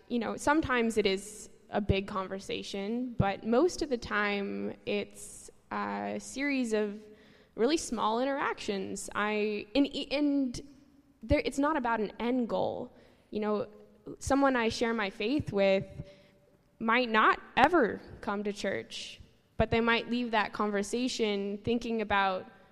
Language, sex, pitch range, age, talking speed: English, female, 195-230 Hz, 10-29, 135 wpm